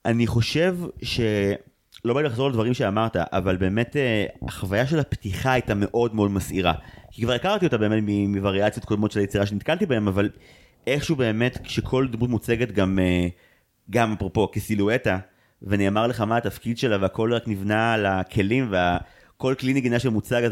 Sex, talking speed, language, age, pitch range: male, 150 wpm, Hebrew, 30-49, 100-130 Hz